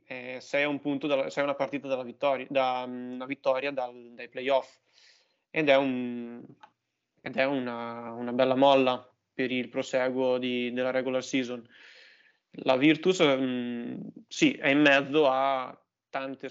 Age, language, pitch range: 20-39, Italian, 125-140 Hz